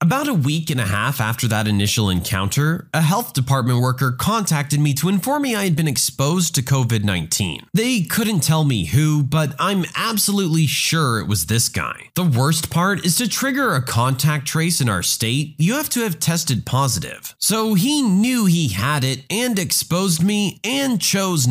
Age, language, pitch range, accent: 30-49, English, 130-195 Hz, American